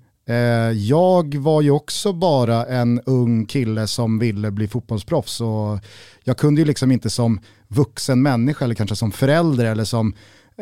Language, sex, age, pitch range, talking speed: Swedish, male, 30-49, 110-140 Hz, 155 wpm